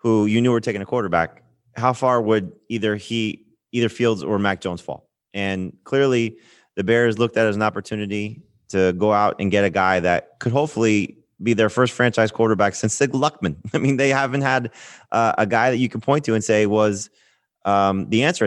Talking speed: 210 wpm